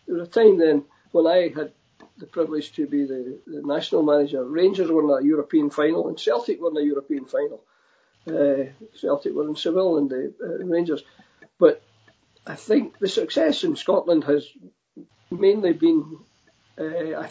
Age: 50-69